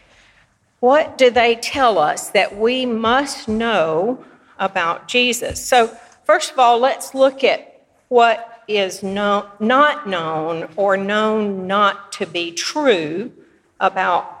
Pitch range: 190-265 Hz